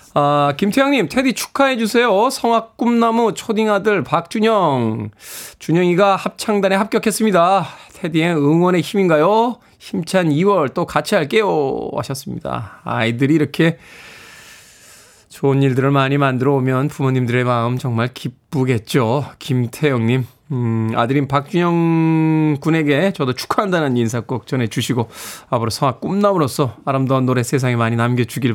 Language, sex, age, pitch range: Korean, male, 20-39, 125-195 Hz